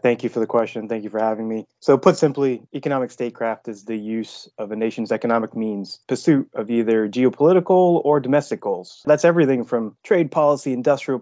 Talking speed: 195 wpm